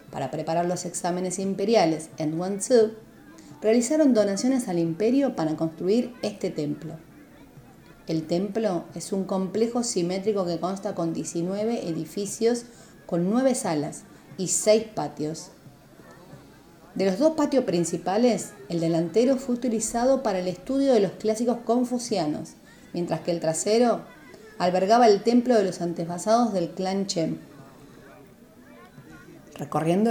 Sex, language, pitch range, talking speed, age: female, Spanish, 170-225 Hz, 125 wpm, 40-59